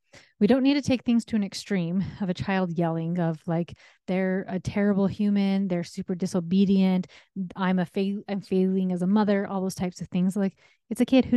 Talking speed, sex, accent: 210 wpm, female, American